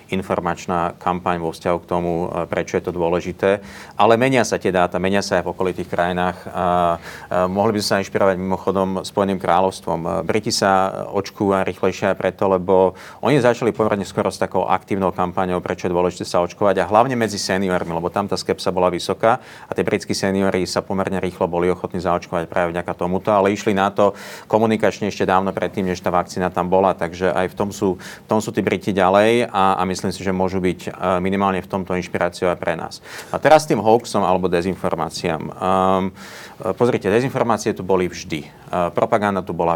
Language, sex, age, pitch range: Slovak, male, 40-59, 90-105 Hz